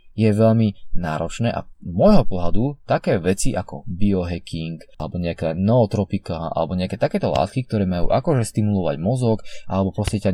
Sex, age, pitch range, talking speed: male, 20-39, 95-130 Hz, 145 wpm